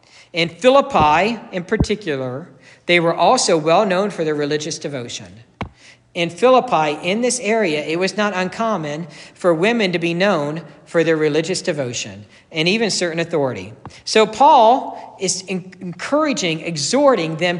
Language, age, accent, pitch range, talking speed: English, 50-69, American, 160-240 Hz, 135 wpm